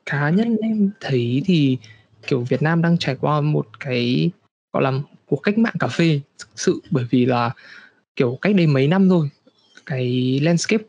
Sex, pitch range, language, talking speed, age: male, 135-180 Hz, Vietnamese, 180 wpm, 20-39